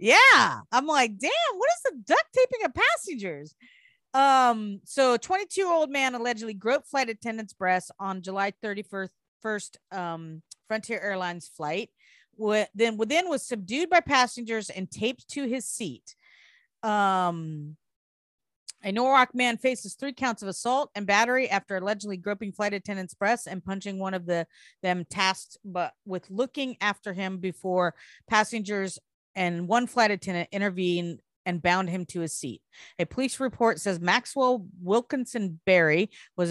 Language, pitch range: English, 180-245 Hz